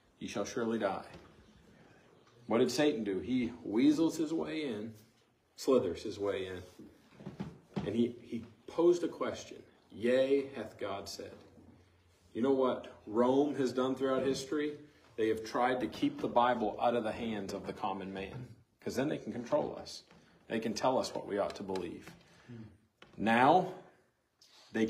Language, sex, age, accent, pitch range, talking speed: English, male, 40-59, American, 105-135 Hz, 160 wpm